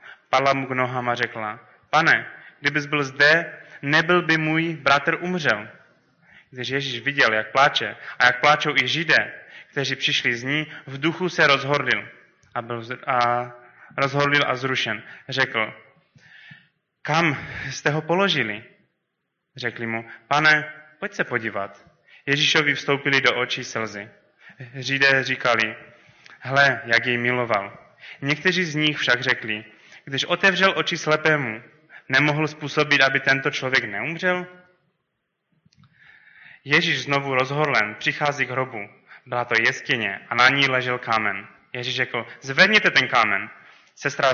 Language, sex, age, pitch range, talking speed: Czech, male, 20-39, 125-155 Hz, 130 wpm